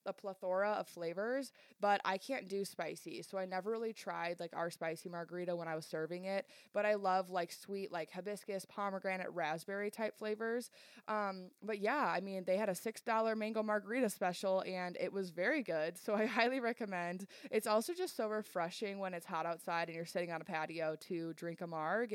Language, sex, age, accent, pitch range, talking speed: English, female, 20-39, American, 175-220 Hz, 200 wpm